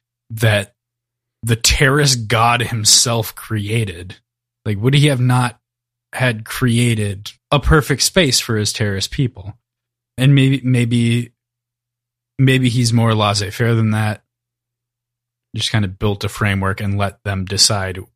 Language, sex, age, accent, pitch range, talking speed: English, male, 20-39, American, 105-125 Hz, 130 wpm